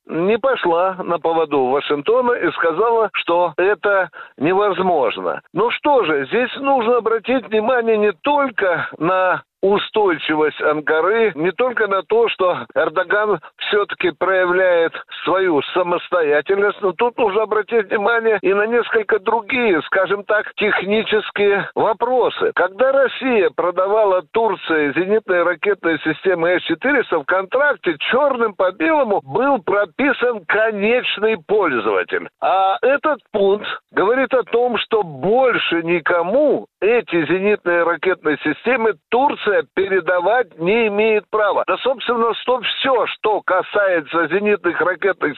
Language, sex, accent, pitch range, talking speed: Russian, male, native, 185-255 Hz, 115 wpm